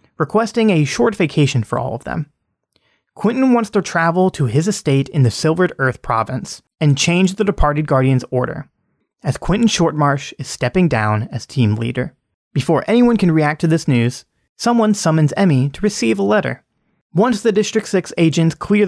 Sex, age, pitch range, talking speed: male, 30-49, 125-175 Hz, 175 wpm